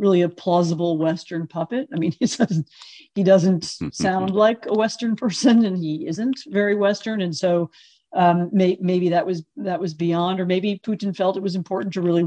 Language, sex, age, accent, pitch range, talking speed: English, female, 40-59, American, 160-200 Hz, 195 wpm